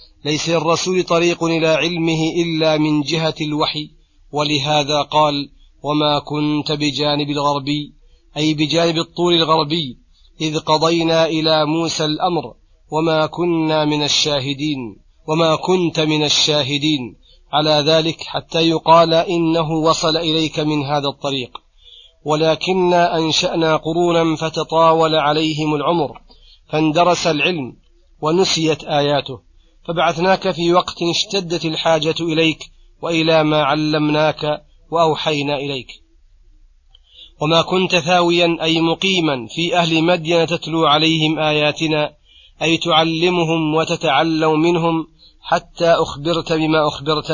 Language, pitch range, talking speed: Arabic, 150-165 Hz, 105 wpm